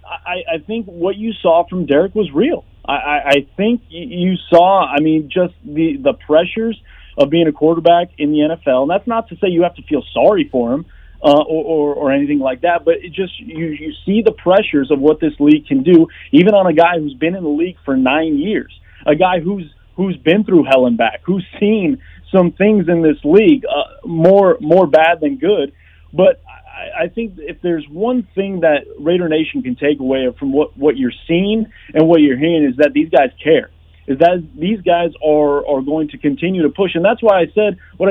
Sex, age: male, 30-49